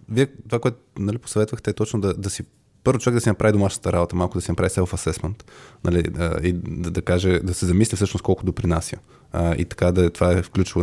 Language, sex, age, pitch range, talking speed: Bulgarian, male, 20-39, 90-115 Hz, 220 wpm